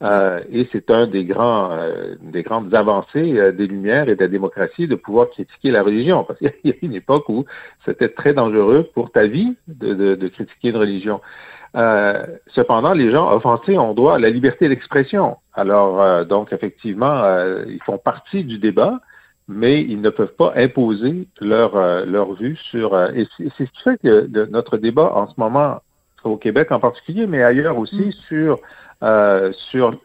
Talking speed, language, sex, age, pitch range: 190 wpm, French, male, 50-69, 100-135 Hz